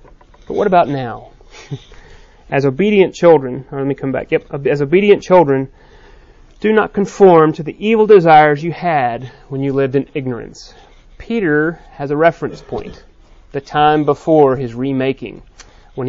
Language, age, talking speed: English, 30-49, 150 wpm